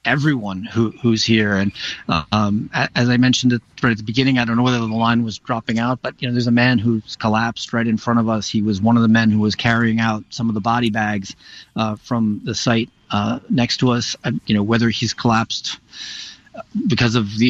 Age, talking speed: 40-59, 235 wpm